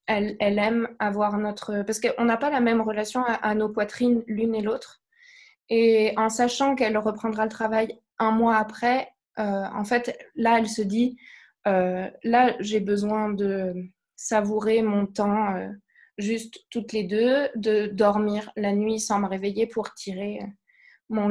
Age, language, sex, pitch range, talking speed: 20-39, French, female, 205-235 Hz, 165 wpm